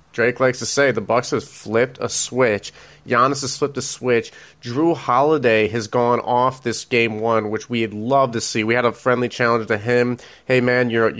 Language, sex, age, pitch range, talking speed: English, male, 30-49, 115-140 Hz, 205 wpm